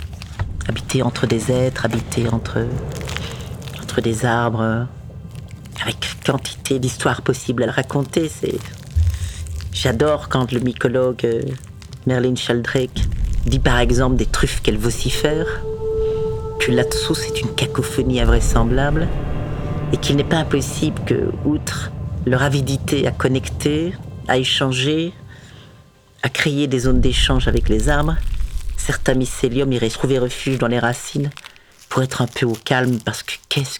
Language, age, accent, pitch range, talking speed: French, 40-59, French, 100-135 Hz, 135 wpm